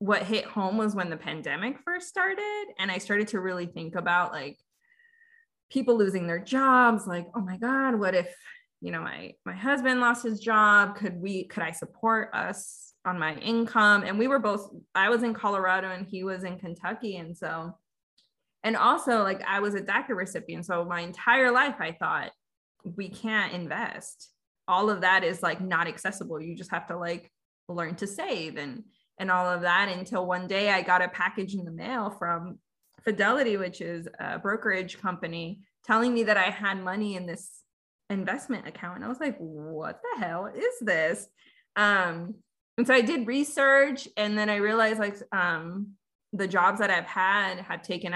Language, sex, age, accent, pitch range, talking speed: English, female, 20-39, American, 180-225 Hz, 190 wpm